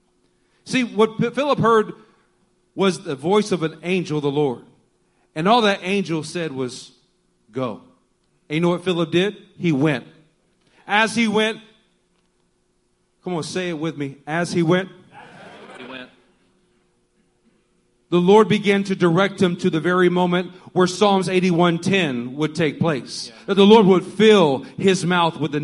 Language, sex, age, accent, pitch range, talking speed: English, male, 40-59, American, 160-210 Hz, 150 wpm